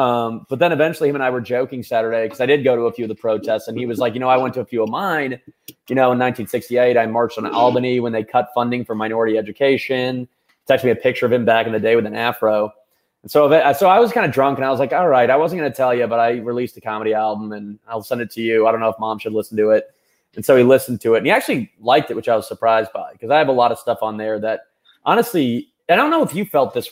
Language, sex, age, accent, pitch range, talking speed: English, male, 20-39, American, 115-140 Hz, 305 wpm